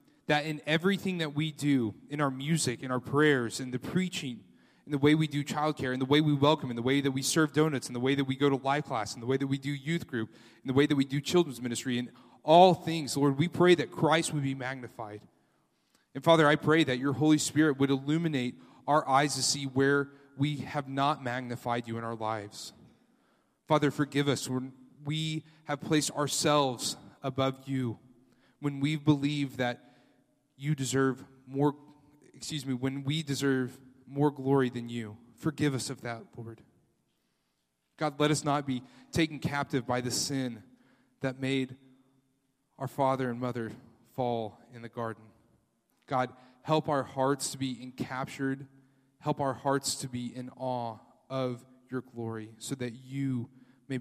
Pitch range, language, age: 125-145 Hz, English, 30-49